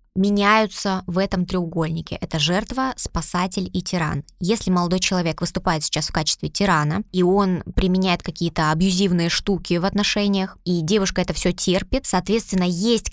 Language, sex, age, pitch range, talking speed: Russian, female, 20-39, 175-205 Hz, 145 wpm